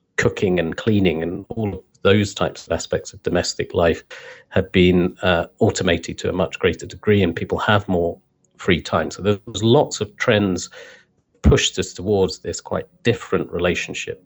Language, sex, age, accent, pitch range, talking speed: English, male, 40-59, British, 85-105 Hz, 170 wpm